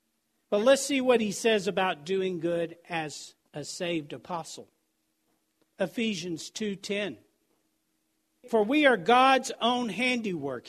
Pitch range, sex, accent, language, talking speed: 200-275 Hz, male, American, English, 120 wpm